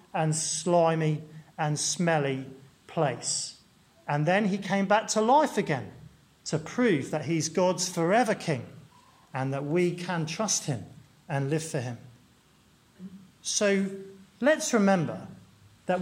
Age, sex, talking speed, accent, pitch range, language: 40-59, male, 125 wpm, British, 150-210 Hz, English